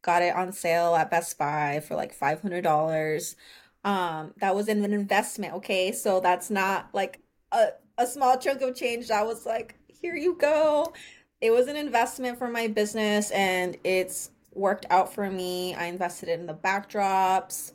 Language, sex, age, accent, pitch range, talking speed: English, female, 20-39, American, 185-230 Hz, 170 wpm